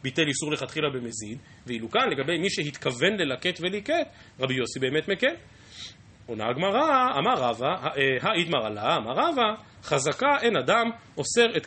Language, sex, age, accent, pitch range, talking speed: Hebrew, male, 30-49, native, 125-190 Hz, 155 wpm